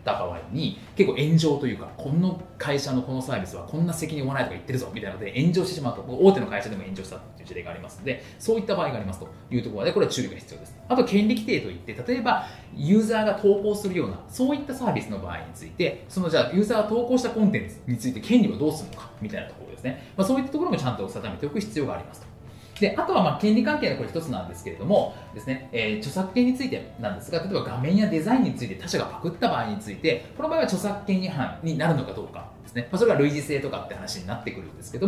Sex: male